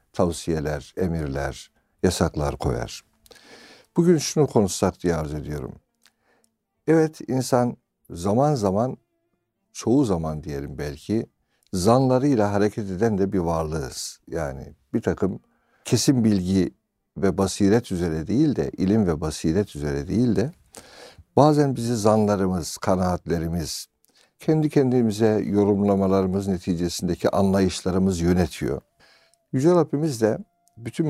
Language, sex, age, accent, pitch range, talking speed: Turkish, male, 60-79, native, 85-125 Hz, 105 wpm